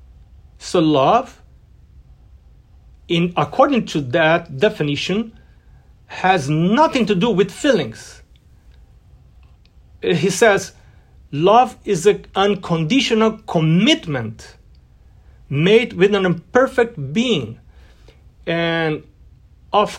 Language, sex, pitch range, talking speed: Portuguese, male, 145-215 Hz, 80 wpm